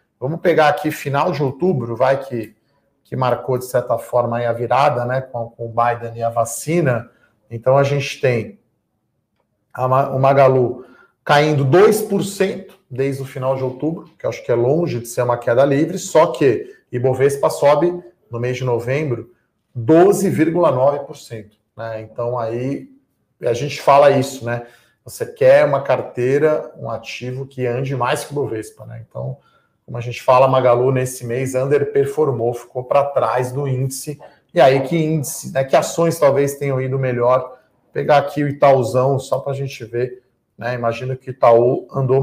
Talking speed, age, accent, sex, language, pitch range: 170 wpm, 40-59, Brazilian, male, Portuguese, 120-145 Hz